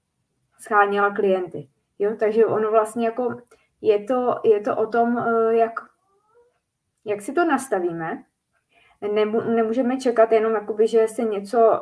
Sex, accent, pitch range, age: female, native, 195-240 Hz, 20-39